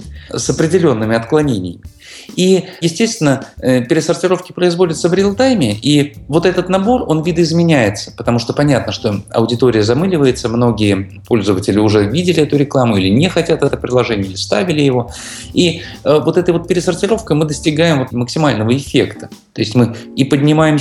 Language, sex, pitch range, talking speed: Russian, male, 105-150 Hz, 140 wpm